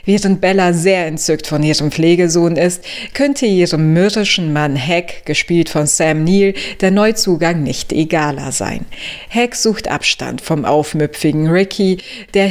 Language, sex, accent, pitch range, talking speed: German, female, German, 160-205 Hz, 140 wpm